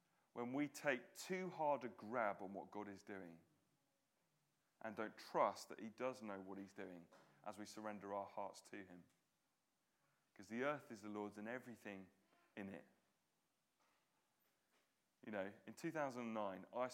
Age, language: 30-49, English